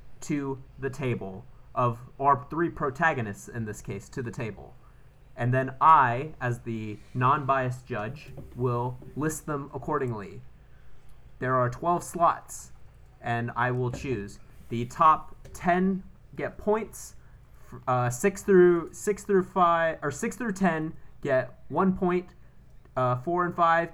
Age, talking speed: 30-49, 135 wpm